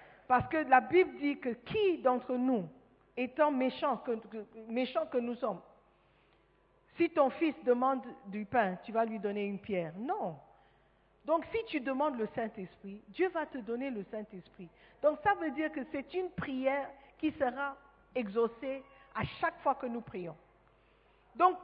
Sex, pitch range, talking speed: female, 205-300 Hz, 160 wpm